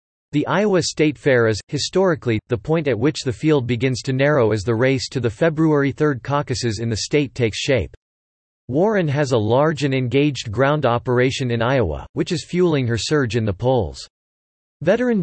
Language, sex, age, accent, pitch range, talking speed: English, male, 40-59, American, 115-150 Hz, 185 wpm